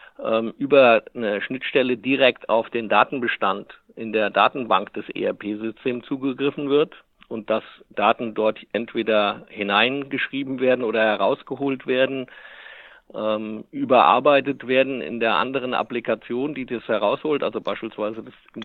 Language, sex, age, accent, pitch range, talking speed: German, male, 50-69, German, 115-140 Hz, 115 wpm